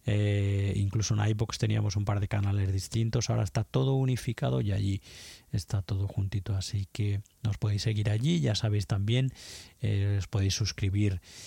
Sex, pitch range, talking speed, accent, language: male, 100-120 Hz, 170 wpm, Spanish, Spanish